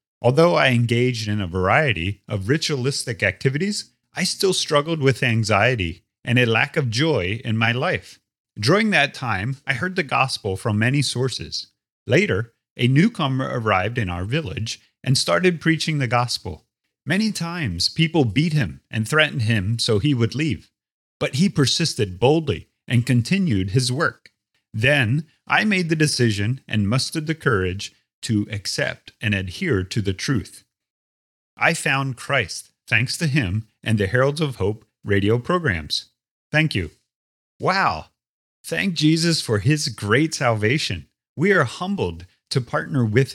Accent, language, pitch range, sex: American, English, 105-150 Hz, male